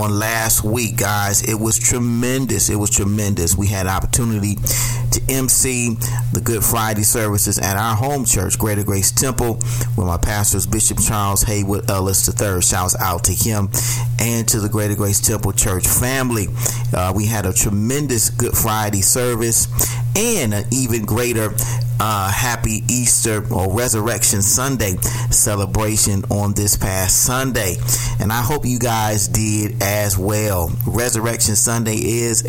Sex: male